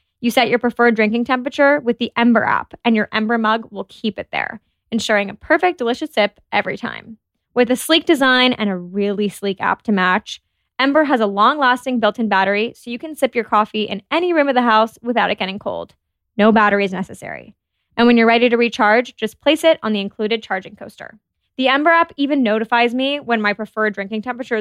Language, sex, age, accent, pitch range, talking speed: English, female, 20-39, American, 210-250 Hz, 210 wpm